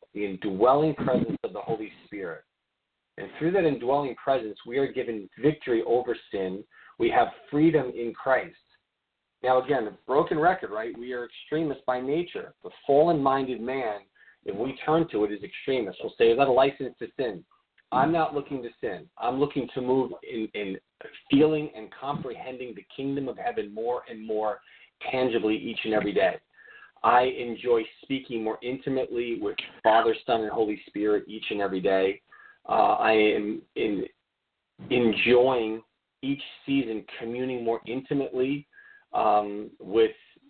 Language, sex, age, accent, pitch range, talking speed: English, male, 40-59, American, 110-140 Hz, 155 wpm